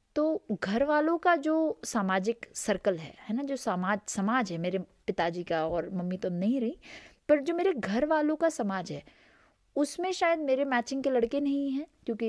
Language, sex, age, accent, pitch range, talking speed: Hindi, female, 20-39, native, 190-275 Hz, 190 wpm